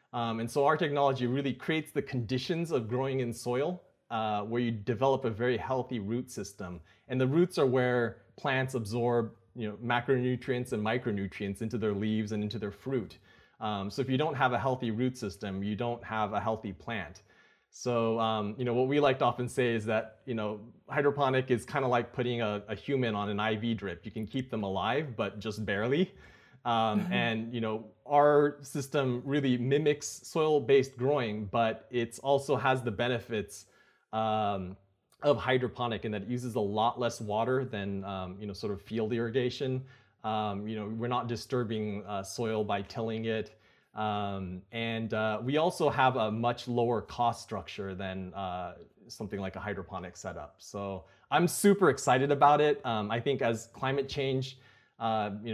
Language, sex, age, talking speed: English, male, 30-49, 185 wpm